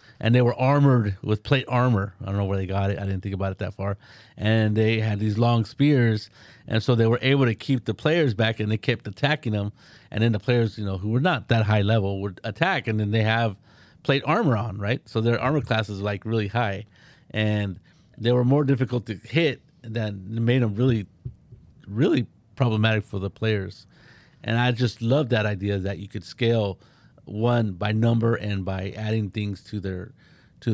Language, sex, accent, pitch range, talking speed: English, male, American, 100-125 Hz, 210 wpm